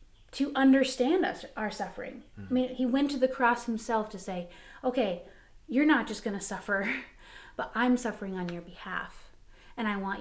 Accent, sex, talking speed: American, female, 180 wpm